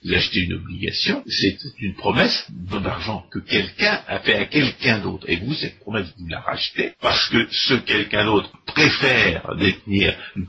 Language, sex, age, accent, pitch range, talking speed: French, male, 50-69, French, 90-135 Hz, 170 wpm